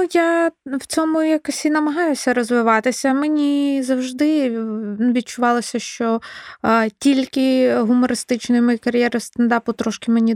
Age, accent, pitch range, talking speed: 20-39, native, 215-245 Hz, 110 wpm